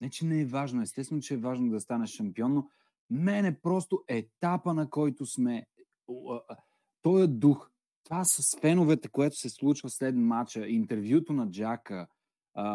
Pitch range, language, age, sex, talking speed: 110-145 Hz, Bulgarian, 30-49, male, 160 wpm